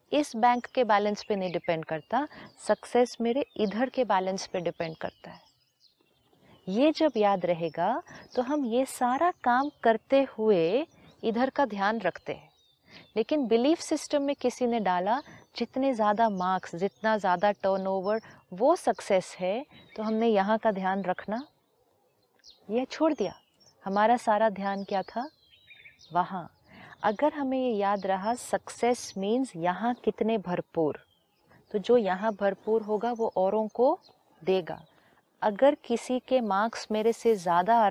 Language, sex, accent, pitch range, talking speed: Hindi, female, native, 195-255 Hz, 145 wpm